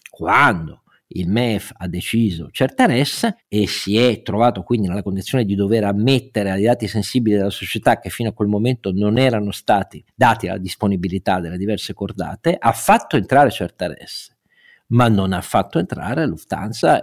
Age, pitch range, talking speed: 50-69, 100-135 Hz, 165 wpm